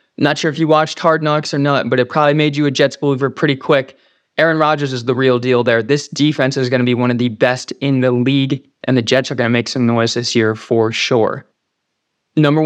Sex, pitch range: male, 130-150 Hz